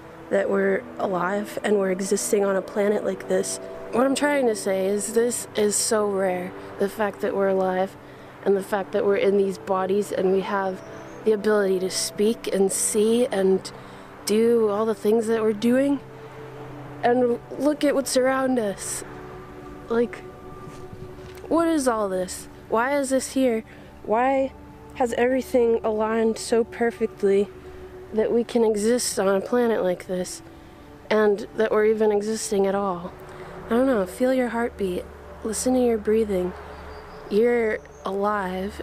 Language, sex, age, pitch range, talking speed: English, female, 20-39, 195-230 Hz, 155 wpm